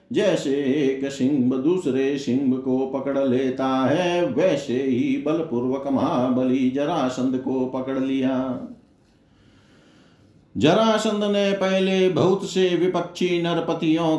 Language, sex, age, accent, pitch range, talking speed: Hindi, male, 50-69, native, 135-180 Hz, 100 wpm